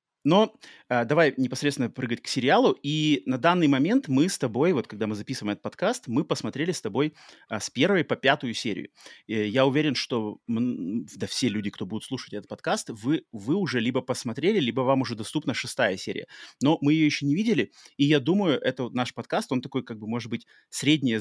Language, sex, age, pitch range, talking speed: Russian, male, 30-49, 110-140 Hz, 195 wpm